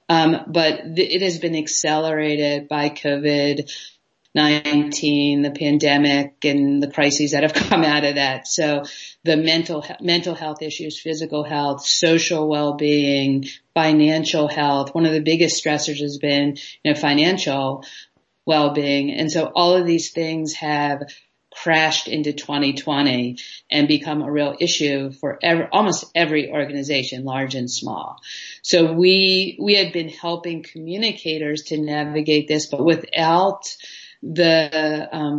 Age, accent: 50-69, American